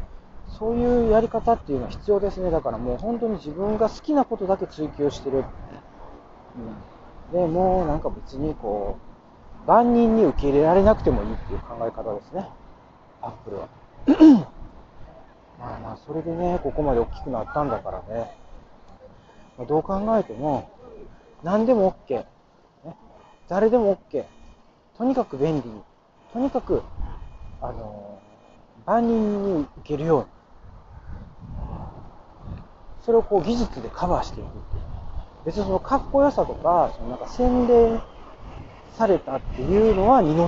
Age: 40-59